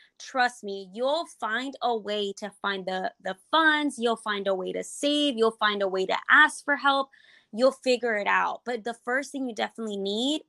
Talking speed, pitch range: 205 wpm, 200-255 Hz